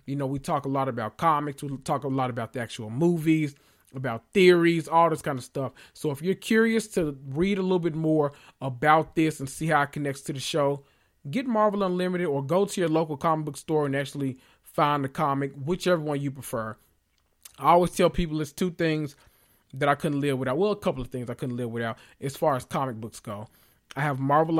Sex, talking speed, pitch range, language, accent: male, 225 wpm, 135-170 Hz, English, American